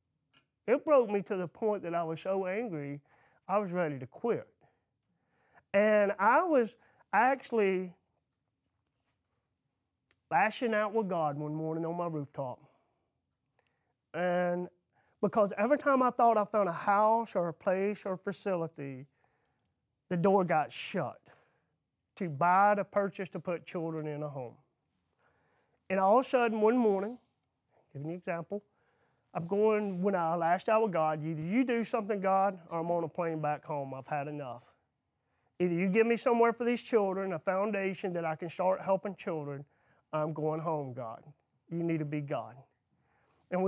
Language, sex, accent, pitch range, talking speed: English, male, American, 160-220 Hz, 165 wpm